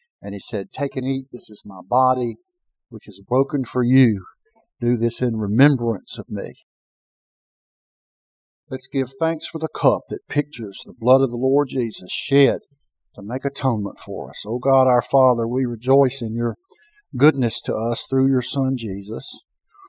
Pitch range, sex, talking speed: 120-160 Hz, male, 170 wpm